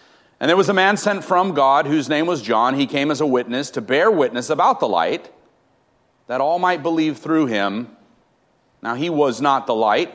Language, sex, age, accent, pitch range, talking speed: English, male, 40-59, American, 125-175 Hz, 205 wpm